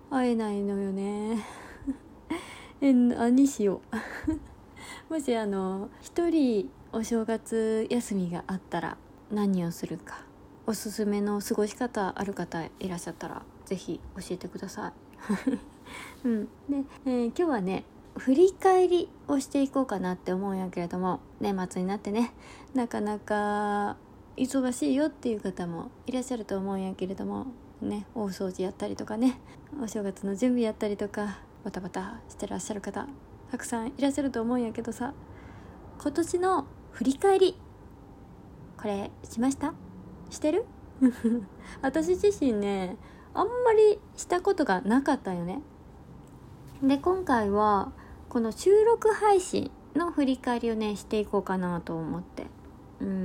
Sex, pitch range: female, 200-275 Hz